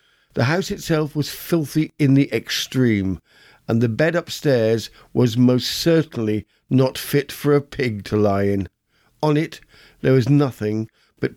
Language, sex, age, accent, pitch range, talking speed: English, male, 50-69, British, 115-150 Hz, 155 wpm